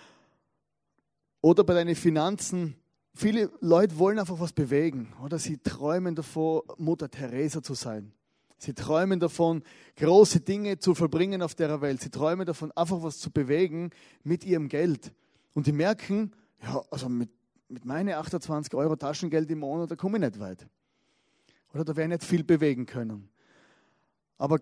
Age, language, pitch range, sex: 30-49, German, 140-175 Hz, male